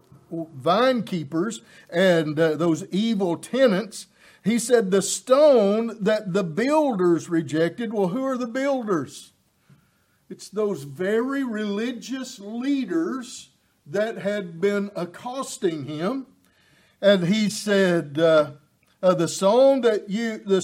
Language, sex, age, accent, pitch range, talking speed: English, male, 50-69, American, 170-235 Hz, 115 wpm